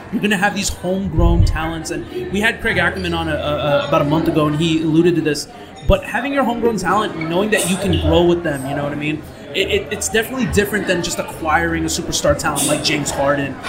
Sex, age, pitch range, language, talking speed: male, 20-39, 155-195 Hz, English, 225 wpm